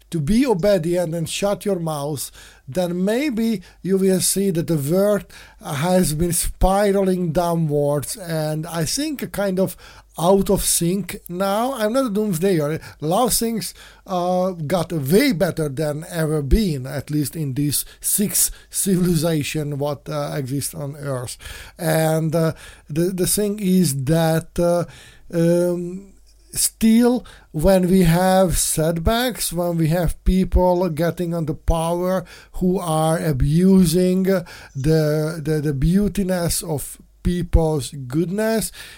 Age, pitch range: 50-69, 160-195 Hz